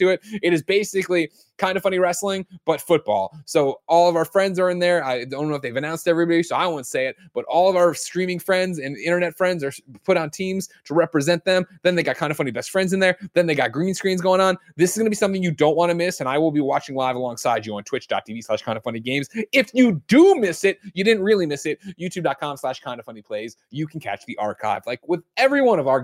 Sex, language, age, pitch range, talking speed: male, English, 20-39, 130-185 Hz, 260 wpm